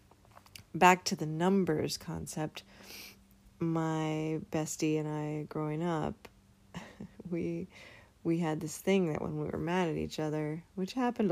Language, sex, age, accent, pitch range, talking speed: English, female, 20-39, American, 105-170 Hz, 140 wpm